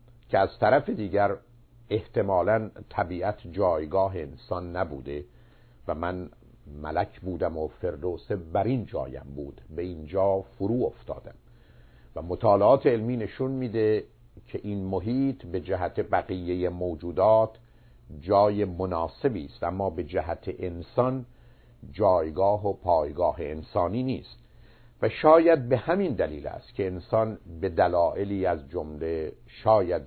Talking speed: 120 wpm